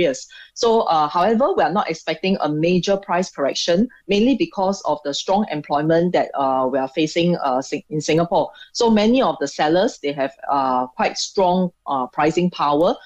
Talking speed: 175 wpm